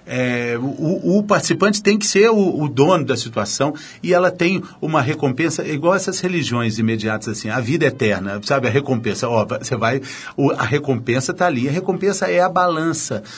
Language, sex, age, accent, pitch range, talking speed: Portuguese, male, 40-59, Brazilian, 115-175 Hz, 185 wpm